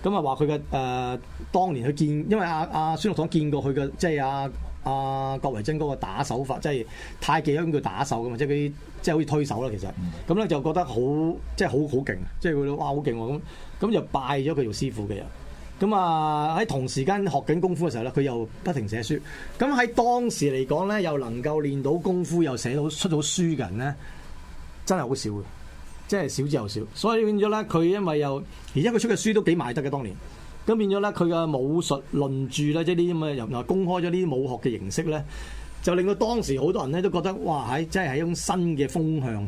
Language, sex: Chinese, male